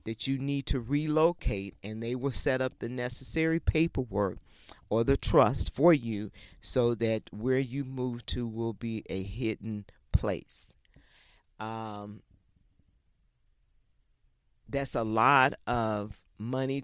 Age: 50-69